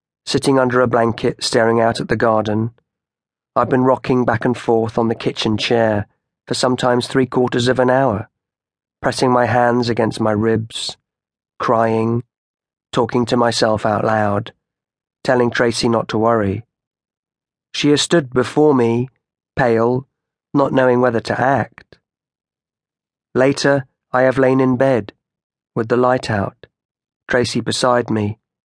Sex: male